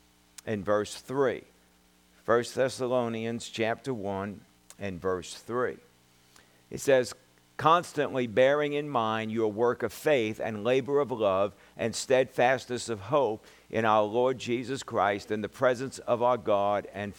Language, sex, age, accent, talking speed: English, male, 50-69, American, 140 wpm